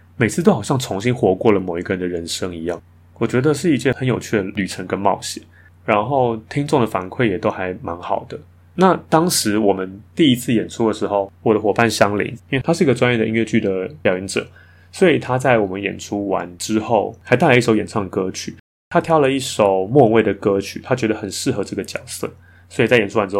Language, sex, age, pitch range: Chinese, male, 20-39, 95-125 Hz